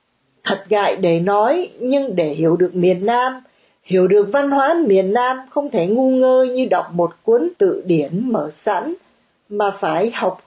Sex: female